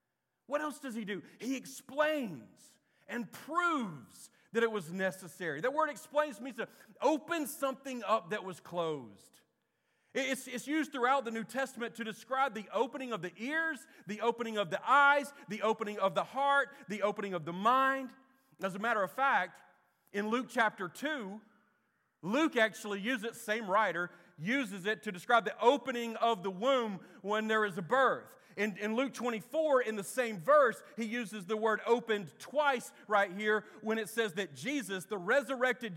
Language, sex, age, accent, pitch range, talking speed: English, male, 40-59, American, 200-255 Hz, 175 wpm